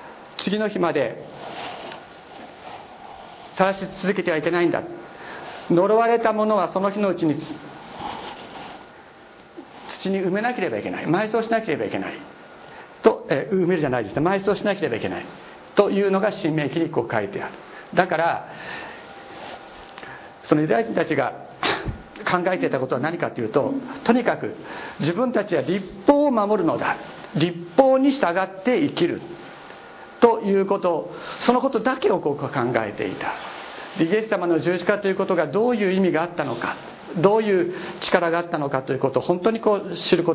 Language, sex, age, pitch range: Japanese, male, 50-69, 160-205 Hz